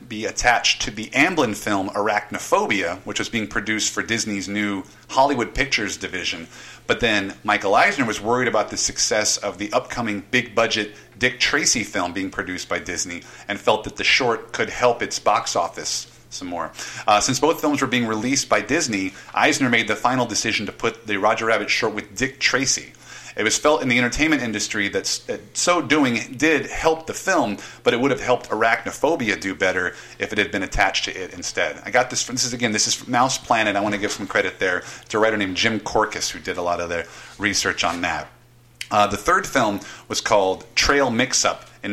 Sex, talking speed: male, 210 wpm